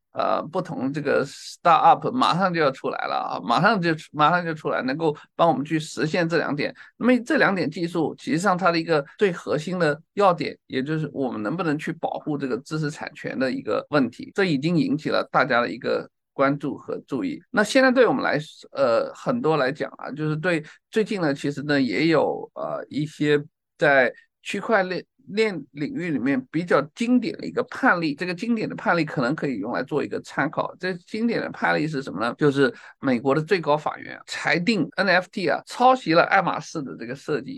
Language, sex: Chinese, male